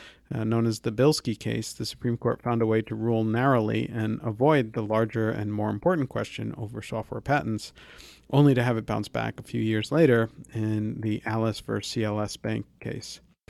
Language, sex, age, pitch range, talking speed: English, male, 50-69, 110-140 Hz, 190 wpm